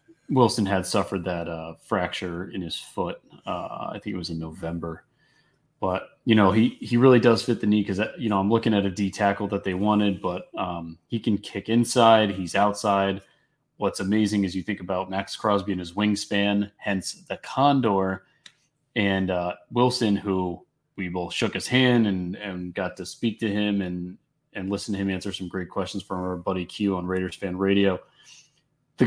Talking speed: 195 wpm